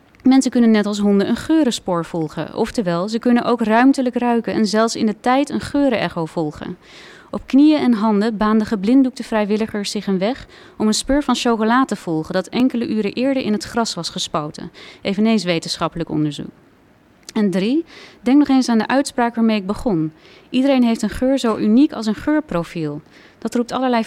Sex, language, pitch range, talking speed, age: female, Dutch, 195-250 Hz, 185 wpm, 30-49